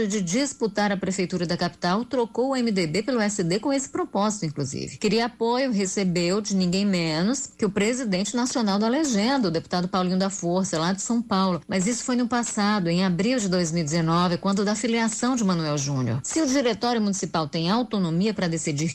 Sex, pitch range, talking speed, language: female, 170-215 Hz, 185 wpm, Portuguese